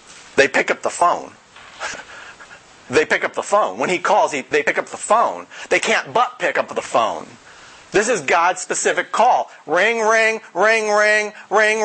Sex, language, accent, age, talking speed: male, English, American, 50-69, 180 wpm